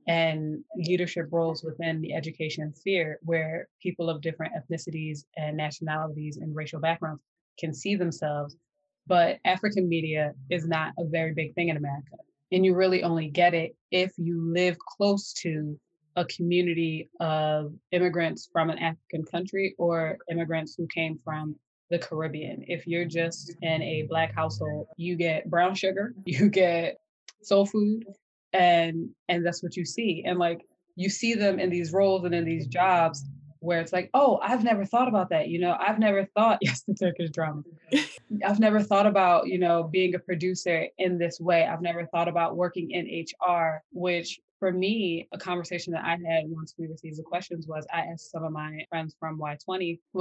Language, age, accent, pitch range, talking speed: English, 20-39, American, 160-180 Hz, 180 wpm